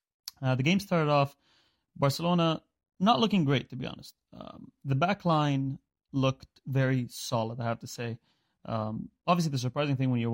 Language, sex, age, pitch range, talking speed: English, male, 30-49, 115-135 Hz, 175 wpm